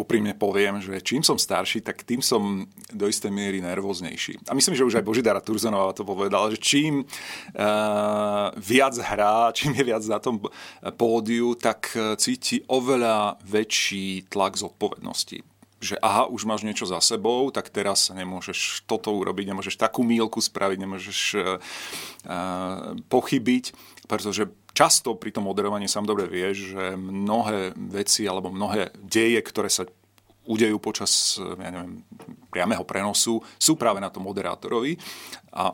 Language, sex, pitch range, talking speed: Slovak, male, 95-115 Hz, 140 wpm